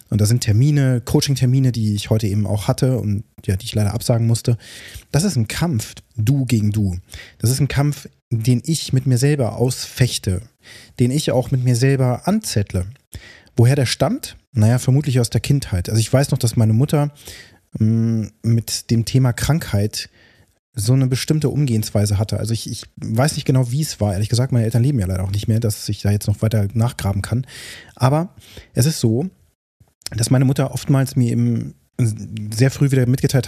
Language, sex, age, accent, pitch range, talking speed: German, male, 30-49, German, 105-130 Hz, 190 wpm